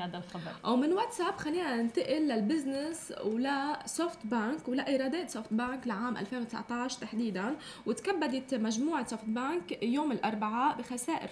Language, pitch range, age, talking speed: Arabic, 230-285 Hz, 20-39, 115 wpm